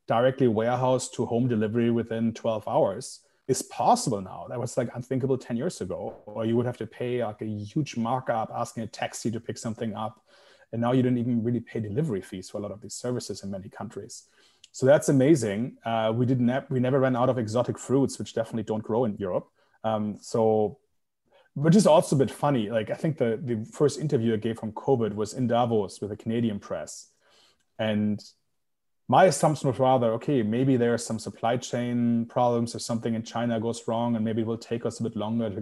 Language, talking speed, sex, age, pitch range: English, 215 wpm, male, 30-49, 110-130 Hz